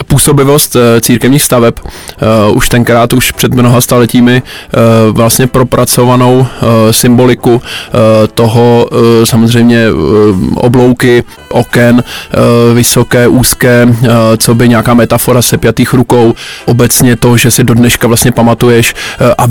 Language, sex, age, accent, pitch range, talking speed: Czech, male, 20-39, native, 120-125 Hz, 105 wpm